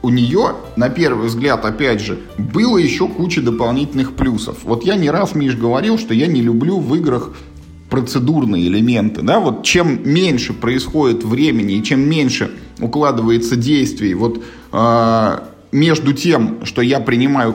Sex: male